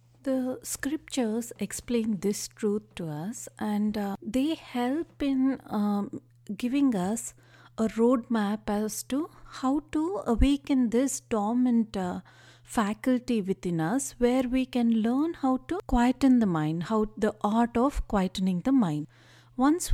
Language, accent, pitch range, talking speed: English, Indian, 205-260 Hz, 140 wpm